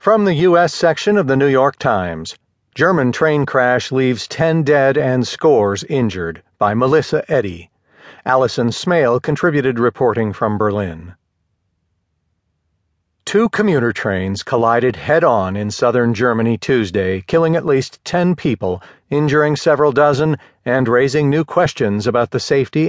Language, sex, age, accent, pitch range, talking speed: English, male, 50-69, American, 100-145 Hz, 135 wpm